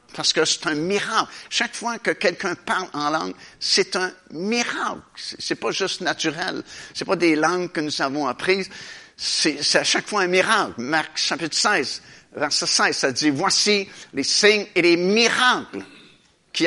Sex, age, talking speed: male, 60-79, 180 wpm